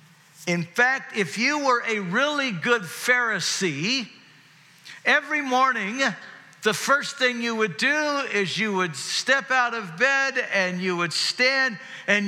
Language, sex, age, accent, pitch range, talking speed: English, male, 50-69, American, 160-230 Hz, 140 wpm